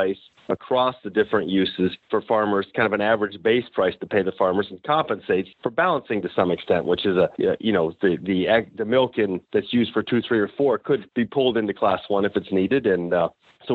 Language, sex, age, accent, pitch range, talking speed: English, male, 40-59, American, 105-130 Hz, 230 wpm